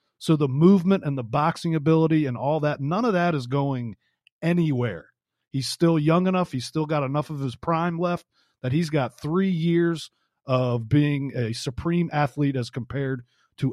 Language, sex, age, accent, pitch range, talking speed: English, male, 40-59, American, 130-170 Hz, 180 wpm